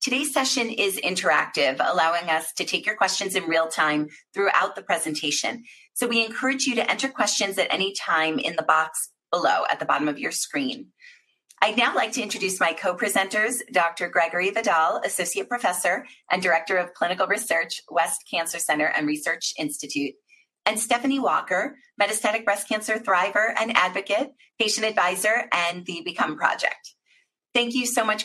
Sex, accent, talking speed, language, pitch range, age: female, American, 165 wpm, English, 180-240 Hz, 30-49